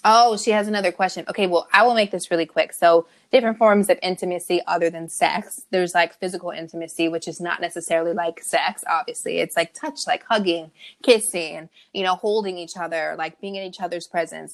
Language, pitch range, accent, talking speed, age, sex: English, 170-200 Hz, American, 200 wpm, 20-39, female